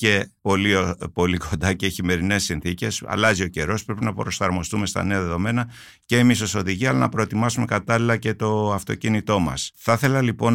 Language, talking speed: Greek, 175 wpm